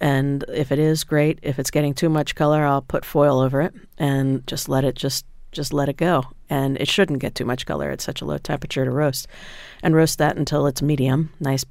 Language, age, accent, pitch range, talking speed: English, 50-69, American, 135-160 Hz, 235 wpm